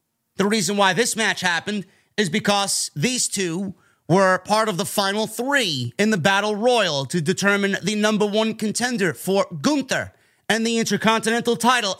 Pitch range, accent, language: 165-230 Hz, American, English